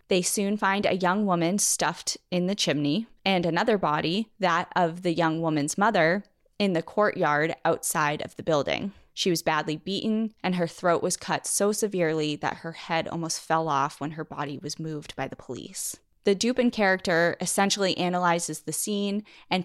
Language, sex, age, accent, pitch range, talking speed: English, female, 20-39, American, 160-200 Hz, 180 wpm